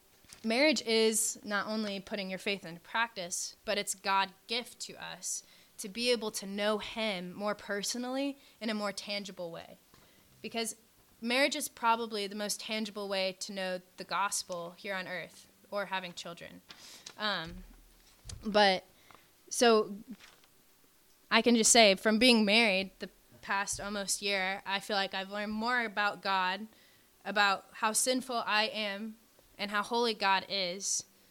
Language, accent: English, American